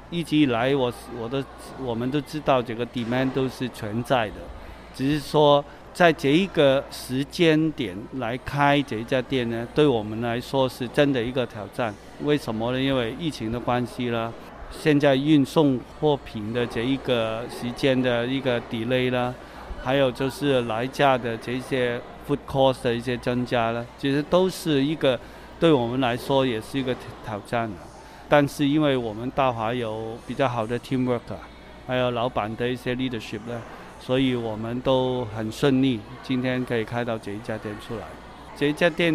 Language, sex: Chinese, male